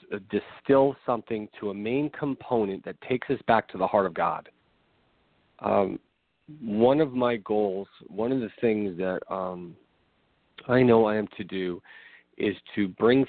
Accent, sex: American, male